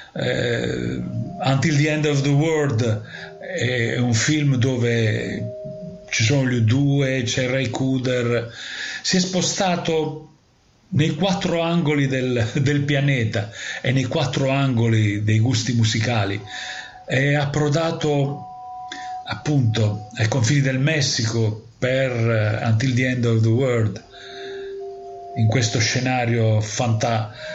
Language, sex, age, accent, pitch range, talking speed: Italian, male, 40-59, native, 115-145 Hz, 115 wpm